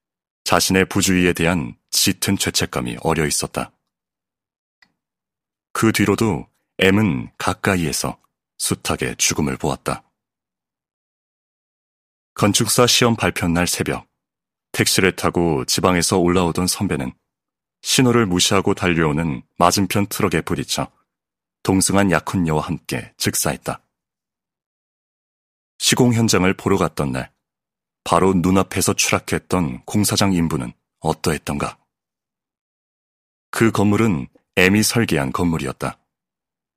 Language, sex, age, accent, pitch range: Korean, male, 30-49, native, 80-100 Hz